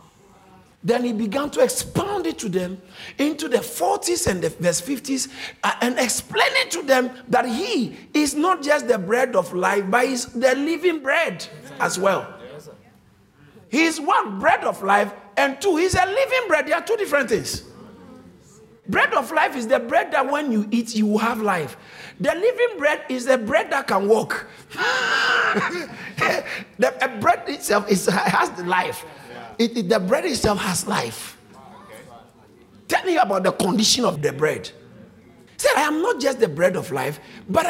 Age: 50-69